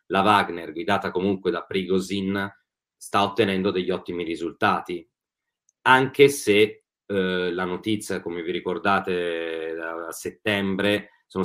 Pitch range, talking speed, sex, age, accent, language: 90-105 Hz, 115 wpm, male, 30-49, native, Italian